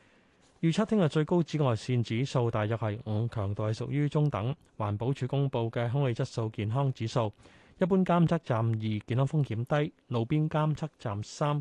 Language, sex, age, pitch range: Chinese, male, 20-39, 110-150 Hz